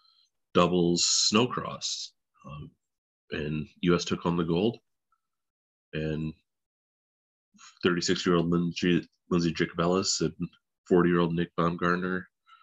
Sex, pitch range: male, 80-90 Hz